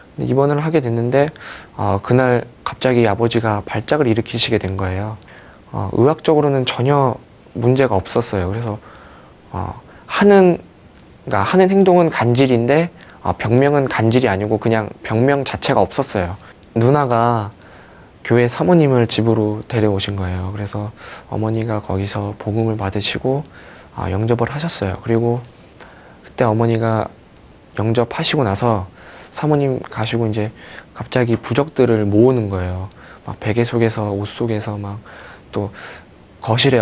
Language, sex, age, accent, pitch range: Korean, male, 20-39, native, 105-130 Hz